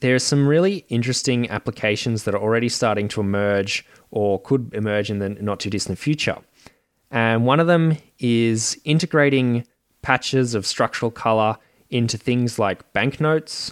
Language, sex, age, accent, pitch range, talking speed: English, male, 20-39, Australian, 100-125 Hz, 155 wpm